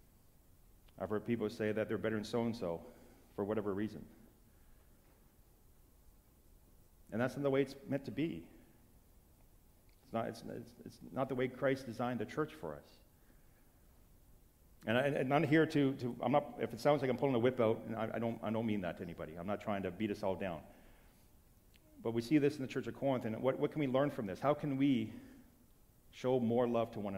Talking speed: 210 wpm